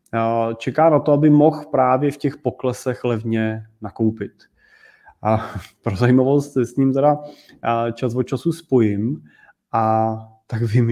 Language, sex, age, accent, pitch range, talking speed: Czech, male, 20-39, native, 115-145 Hz, 135 wpm